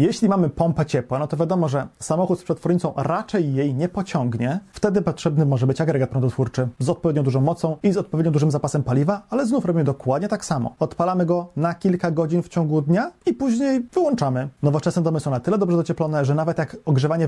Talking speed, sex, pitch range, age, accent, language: 205 wpm, male, 140-185 Hz, 30-49, native, Polish